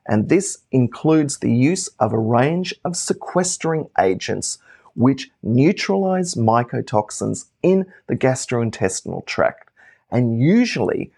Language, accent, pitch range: English, Australian, 120-165 Hz